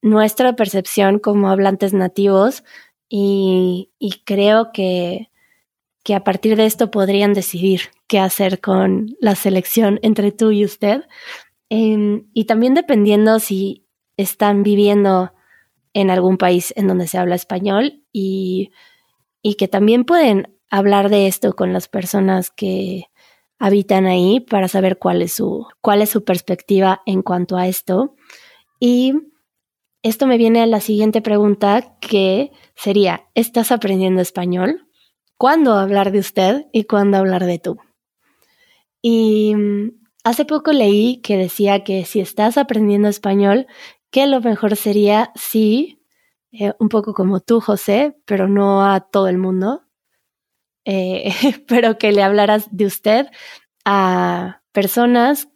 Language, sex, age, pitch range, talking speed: Spanish, female, 20-39, 195-230 Hz, 135 wpm